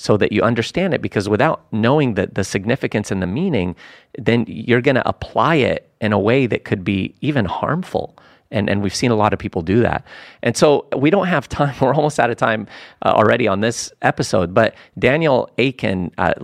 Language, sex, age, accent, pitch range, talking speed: English, male, 40-59, American, 95-125 Hz, 210 wpm